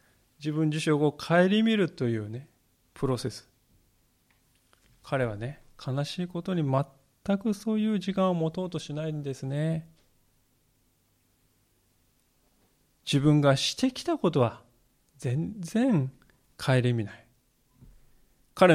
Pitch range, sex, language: 125-175 Hz, male, Japanese